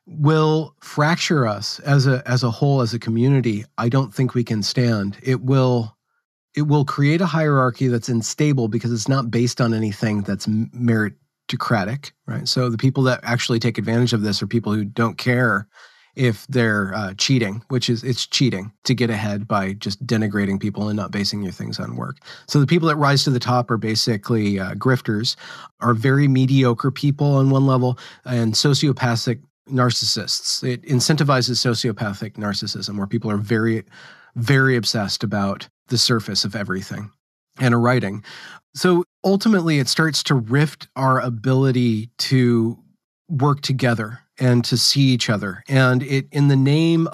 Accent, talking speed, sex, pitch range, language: American, 170 wpm, male, 110-135 Hz, English